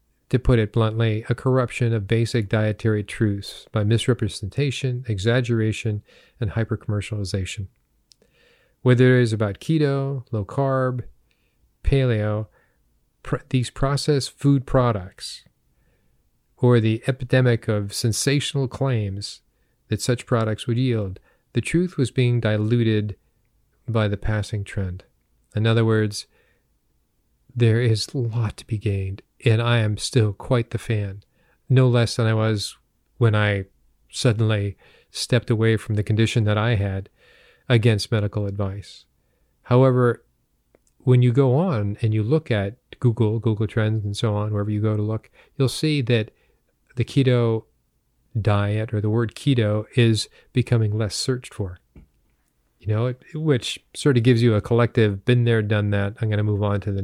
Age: 40-59